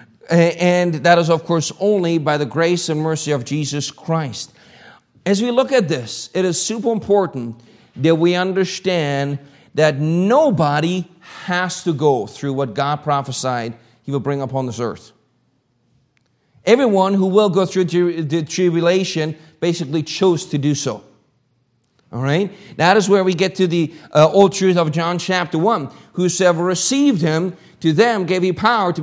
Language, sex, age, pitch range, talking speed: English, male, 40-59, 145-190 Hz, 160 wpm